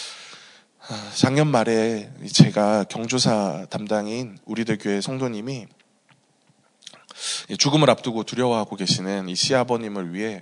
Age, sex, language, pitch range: 20-39, male, Korean, 105-145 Hz